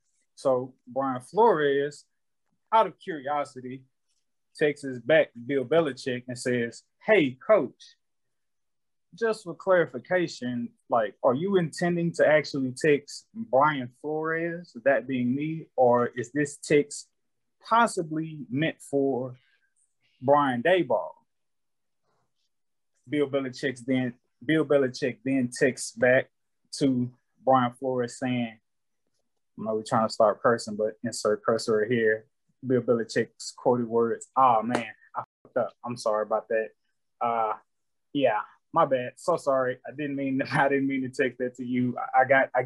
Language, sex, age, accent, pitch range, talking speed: English, male, 20-39, American, 120-145 Hz, 135 wpm